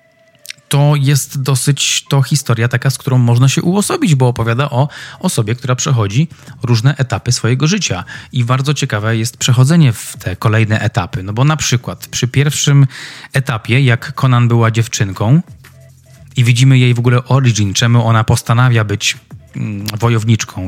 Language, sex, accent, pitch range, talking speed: Polish, male, native, 115-145 Hz, 150 wpm